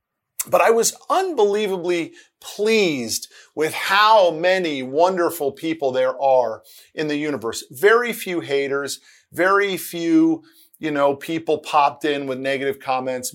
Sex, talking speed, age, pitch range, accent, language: male, 125 wpm, 40-59, 140-200 Hz, American, English